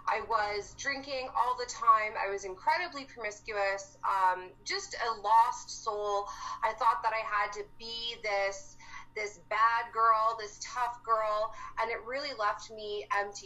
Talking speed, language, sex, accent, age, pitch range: 155 wpm, English, female, American, 30-49, 200-250 Hz